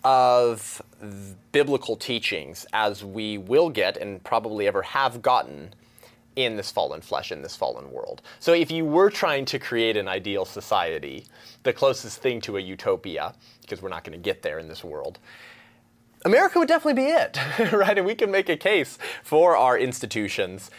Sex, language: male, English